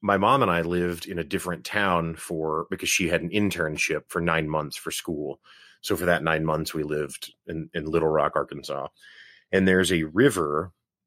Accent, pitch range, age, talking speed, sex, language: American, 80-95 Hz, 30-49, 195 wpm, male, English